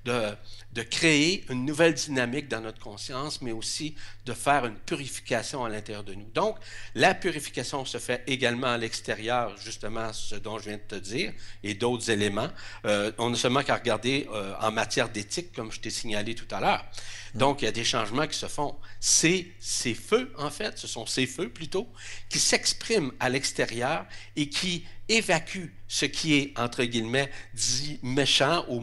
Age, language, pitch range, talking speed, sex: 60-79, French, 110-140 Hz, 185 wpm, male